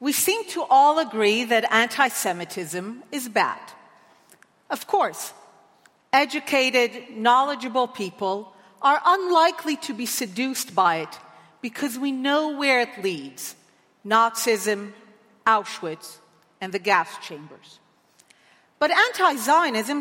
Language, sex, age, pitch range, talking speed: English, female, 50-69, 210-300 Hz, 105 wpm